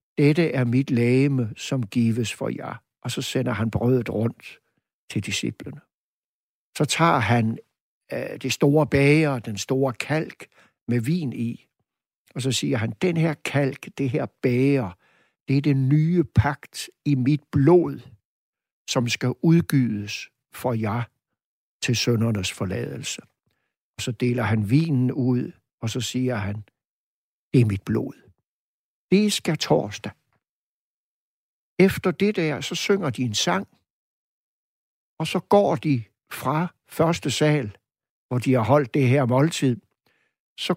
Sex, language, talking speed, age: male, Danish, 140 wpm, 60-79